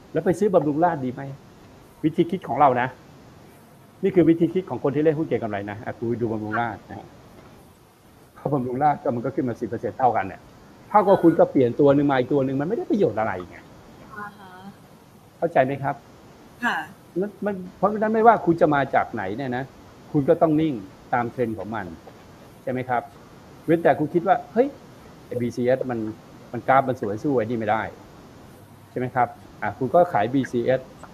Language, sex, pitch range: Thai, male, 120-155 Hz